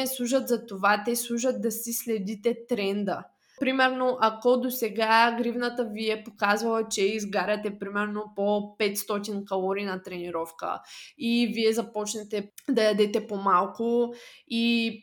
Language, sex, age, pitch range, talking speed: Bulgarian, female, 20-39, 200-235 Hz, 130 wpm